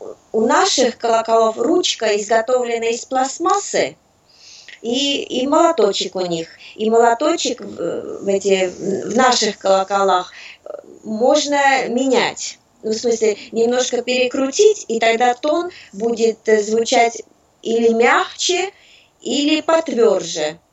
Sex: female